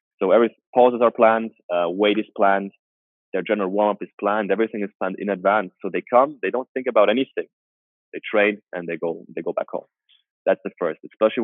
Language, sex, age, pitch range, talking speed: French, male, 20-39, 95-115 Hz, 210 wpm